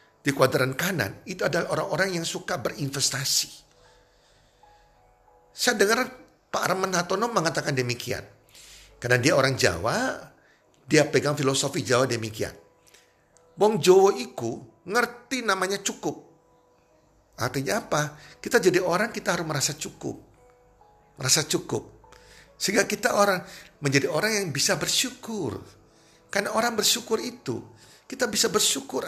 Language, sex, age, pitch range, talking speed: Indonesian, male, 50-69, 130-200 Hz, 120 wpm